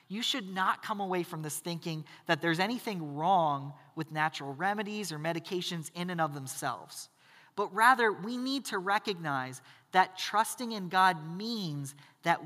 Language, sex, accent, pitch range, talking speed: English, male, American, 150-220 Hz, 160 wpm